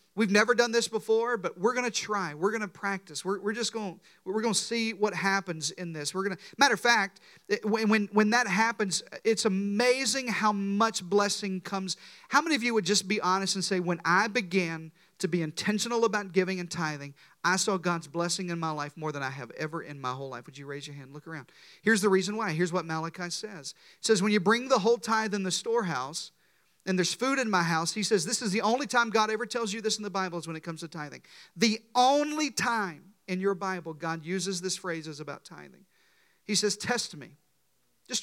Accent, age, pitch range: American, 40-59, 175-220 Hz